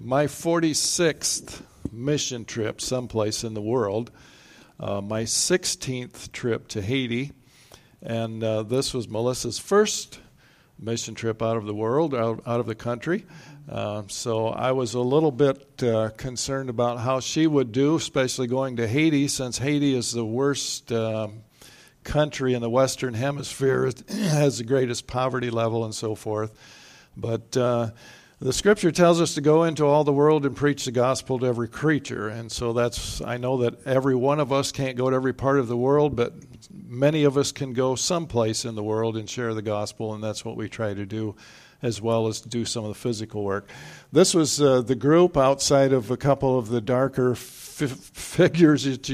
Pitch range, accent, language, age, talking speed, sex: 115-140 Hz, American, English, 60-79, 185 wpm, male